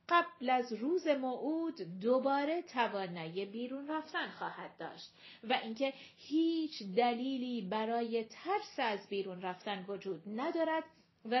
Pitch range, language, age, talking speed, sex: 225-310 Hz, Persian, 40-59, 115 wpm, female